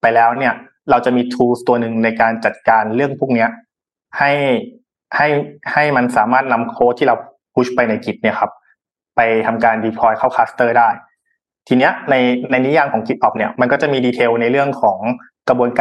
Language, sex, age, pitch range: Thai, male, 20-39, 115-140 Hz